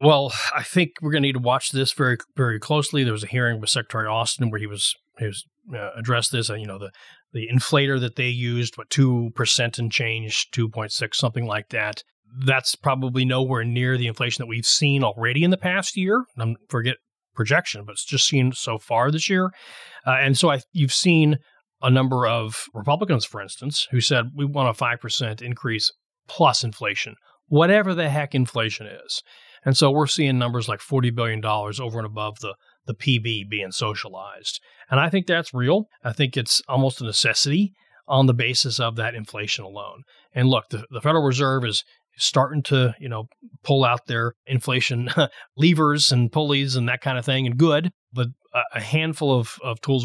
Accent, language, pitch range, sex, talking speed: American, English, 115-140 Hz, male, 200 wpm